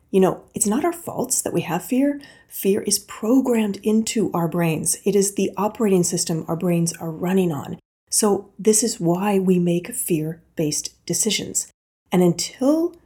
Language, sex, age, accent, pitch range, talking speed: English, female, 30-49, American, 170-215 Hz, 165 wpm